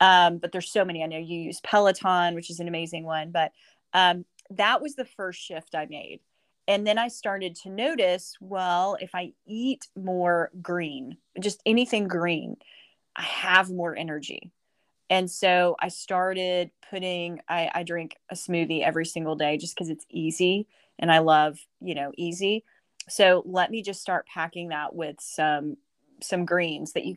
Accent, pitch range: American, 165-195 Hz